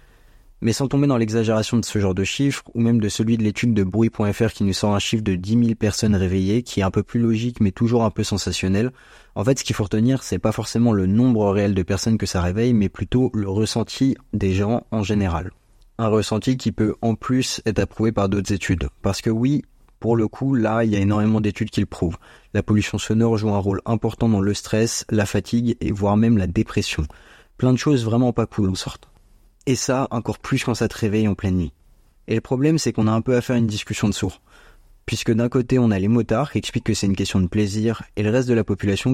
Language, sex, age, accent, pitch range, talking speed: French, male, 20-39, French, 100-115 Hz, 250 wpm